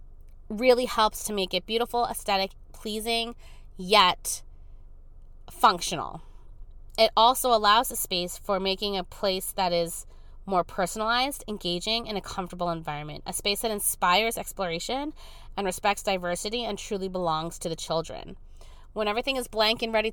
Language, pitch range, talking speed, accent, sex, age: English, 170-225 Hz, 145 wpm, American, female, 20-39